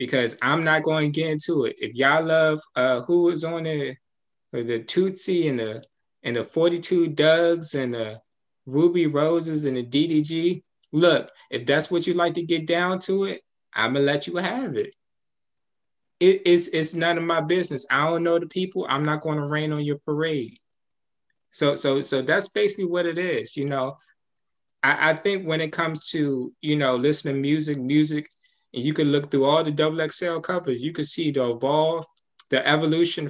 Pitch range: 145-175 Hz